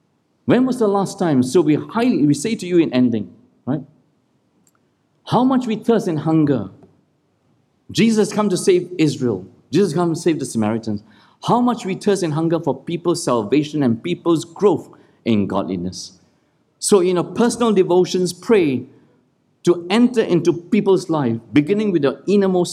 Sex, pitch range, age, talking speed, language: male, 150-220 Hz, 50-69, 165 wpm, English